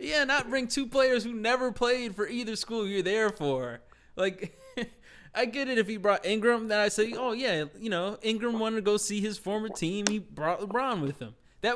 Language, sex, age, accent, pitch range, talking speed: English, male, 20-39, American, 135-205 Hz, 220 wpm